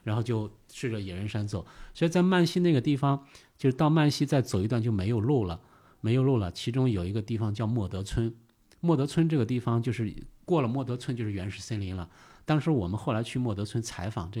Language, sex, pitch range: Chinese, male, 100-125 Hz